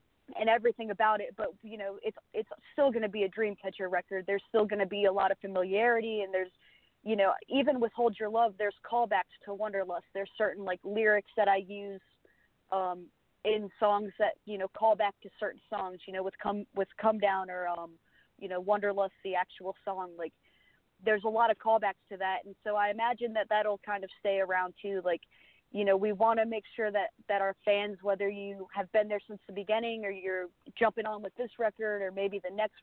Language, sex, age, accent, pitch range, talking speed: English, female, 30-49, American, 190-215 Hz, 225 wpm